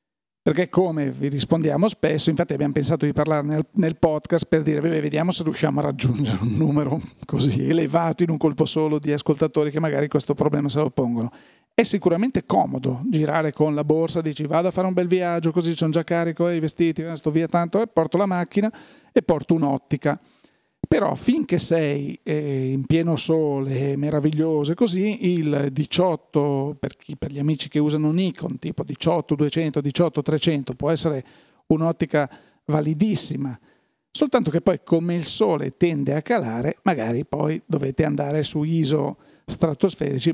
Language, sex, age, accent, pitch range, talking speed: Italian, male, 40-59, native, 145-165 Hz, 160 wpm